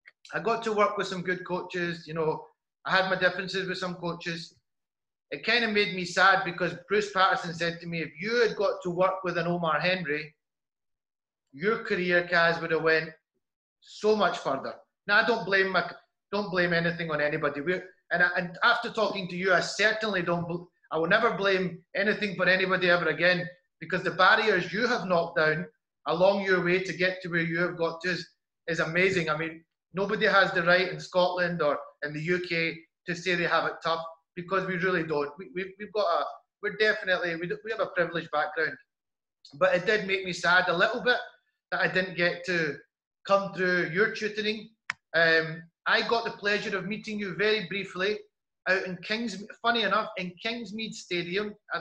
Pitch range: 170-205 Hz